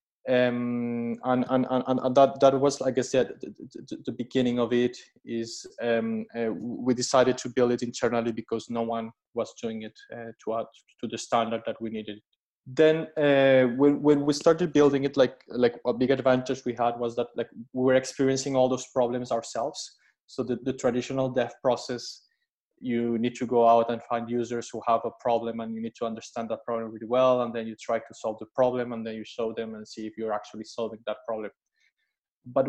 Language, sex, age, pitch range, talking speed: English, male, 20-39, 115-130 Hz, 210 wpm